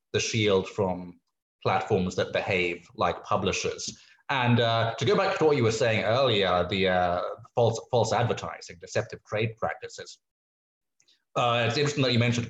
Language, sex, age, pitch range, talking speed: English, male, 20-39, 95-115 Hz, 160 wpm